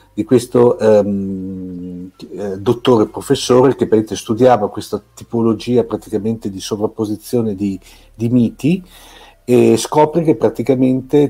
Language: Italian